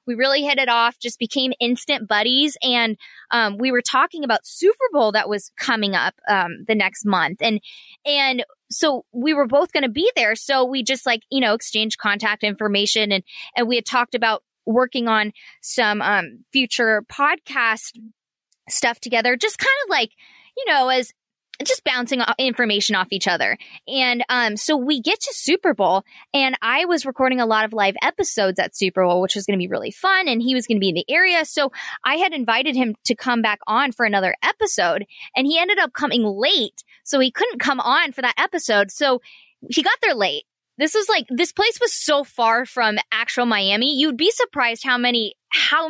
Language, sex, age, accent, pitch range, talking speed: English, female, 20-39, American, 215-290 Hz, 205 wpm